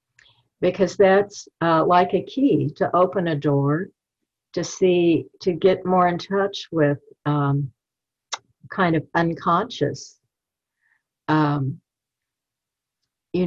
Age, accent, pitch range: 60-79, American, 150-185 Hz